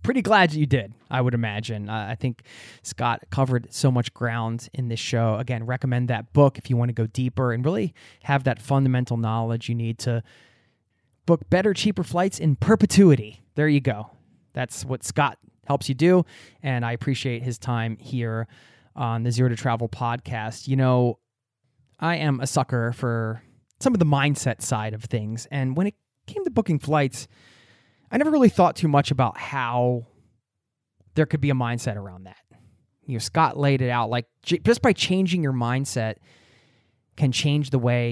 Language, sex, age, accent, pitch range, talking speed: English, male, 20-39, American, 115-145 Hz, 185 wpm